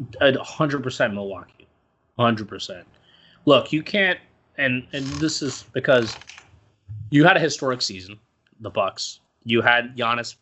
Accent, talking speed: American, 120 wpm